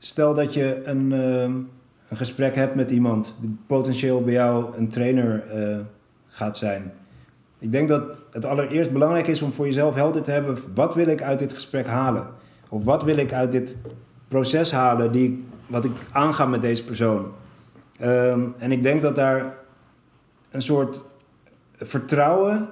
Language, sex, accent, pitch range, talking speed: Dutch, male, Dutch, 120-145 Hz, 170 wpm